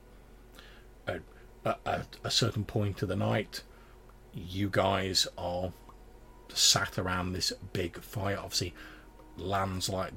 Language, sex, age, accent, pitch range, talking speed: English, male, 40-59, British, 95-105 Hz, 110 wpm